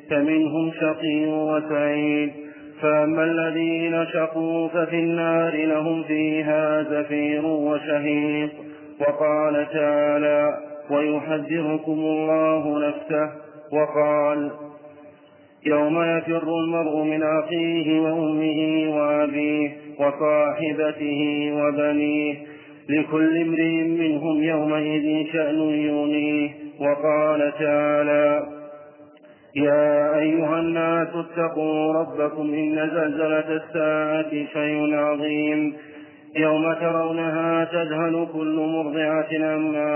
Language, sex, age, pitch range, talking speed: Arabic, male, 40-59, 150-155 Hz, 75 wpm